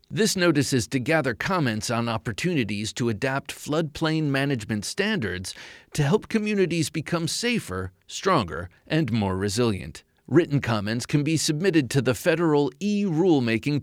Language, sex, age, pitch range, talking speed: English, male, 30-49, 110-155 Hz, 135 wpm